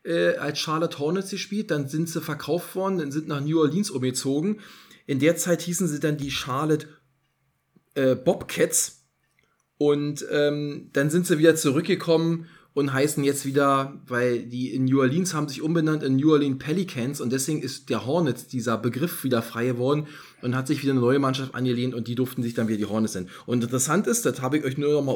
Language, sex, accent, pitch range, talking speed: German, male, German, 130-170 Hz, 205 wpm